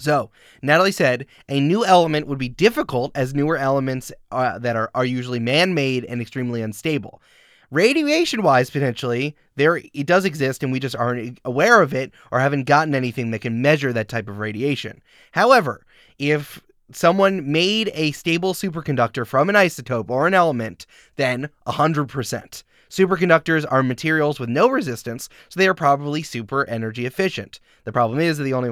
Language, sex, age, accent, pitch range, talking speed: English, male, 20-39, American, 120-160 Hz, 165 wpm